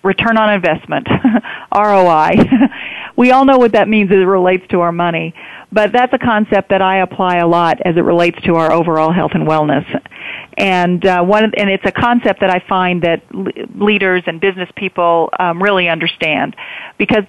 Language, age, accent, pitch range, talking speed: English, 40-59, American, 180-210 Hz, 185 wpm